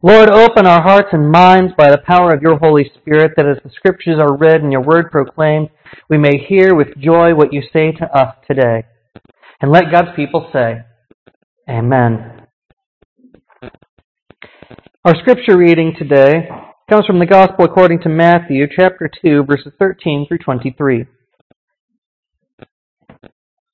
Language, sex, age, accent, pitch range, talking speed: English, male, 40-59, American, 145-190 Hz, 140 wpm